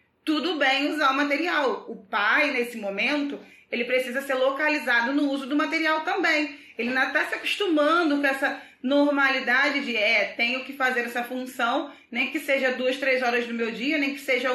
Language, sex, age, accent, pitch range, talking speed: Portuguese, female, 20-39, Brazilian, 240-295 Hz, 185 wpm